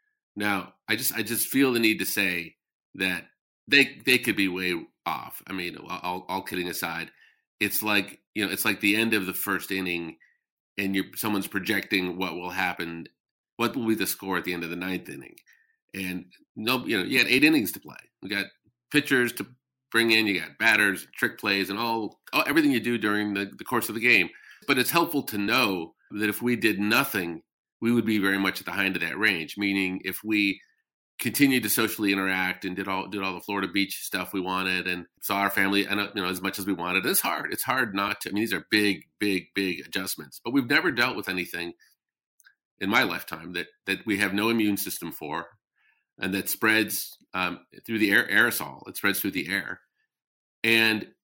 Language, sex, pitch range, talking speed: English, male, 95-110 Hz, 215 wpm